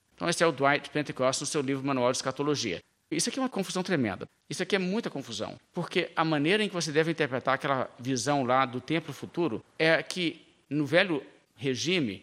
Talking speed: 205 wpm